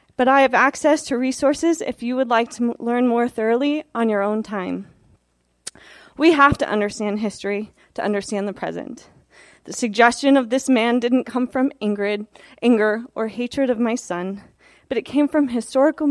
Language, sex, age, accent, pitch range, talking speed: English, female, 20-39, American, 220-275 Hz, 170 wpm